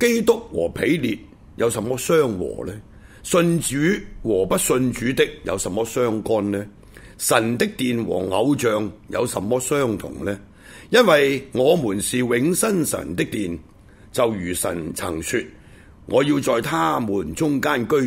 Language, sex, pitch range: Chinese, male, 100-150 Hz